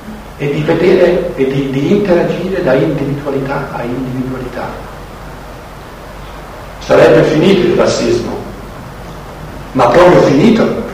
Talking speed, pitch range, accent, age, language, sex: 100 wpm, 135-195 Hz, native, 60-79, Italian, male